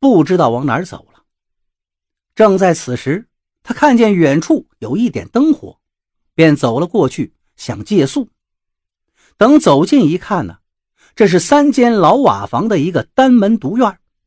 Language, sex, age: Chinese, male, 50-69